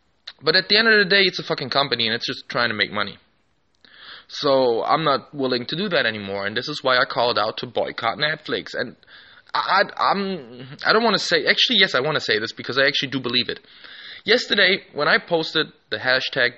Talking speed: 230 wpm